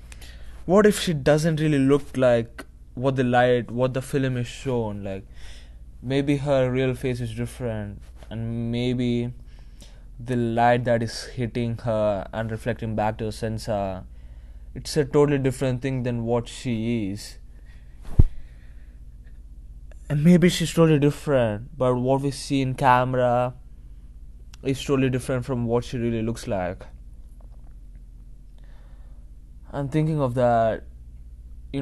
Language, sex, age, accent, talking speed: English, male, 20-39, Indian, 130 wpm